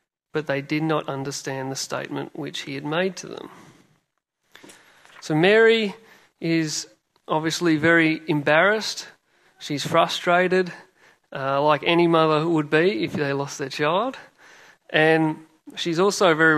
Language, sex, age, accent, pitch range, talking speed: English, male, 40-59, Australian, 150-175 Hz, 135 wpm